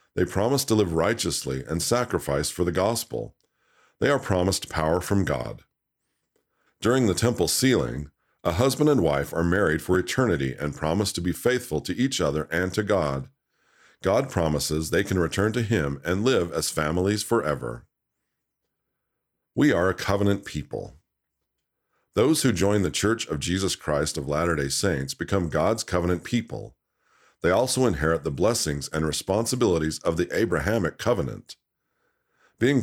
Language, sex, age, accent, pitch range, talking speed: English, male, 50-69, American, 80-115 Hz, 150 wpm